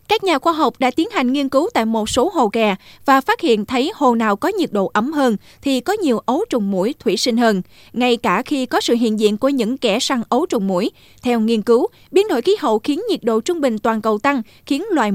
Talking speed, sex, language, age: 260 wpm, female, Vietnamese, 20-39